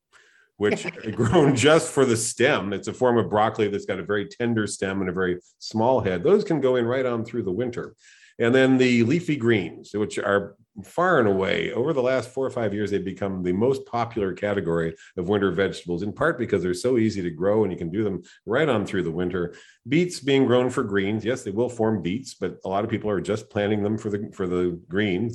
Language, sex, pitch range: English, male, 95-125 Hz